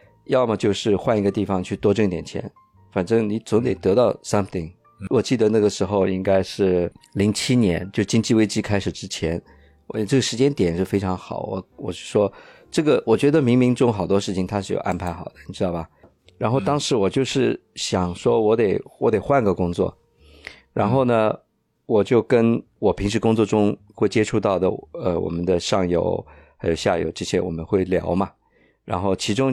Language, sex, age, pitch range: Chinese, male, 50-69, 90-110 Hz